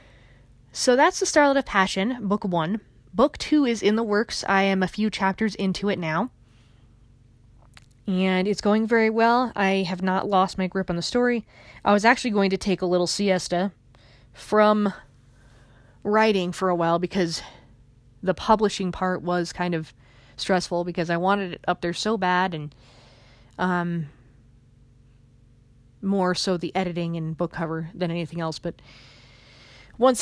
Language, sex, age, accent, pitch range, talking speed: English, female, 20-39, American, 125-205 Hz, 160 wpm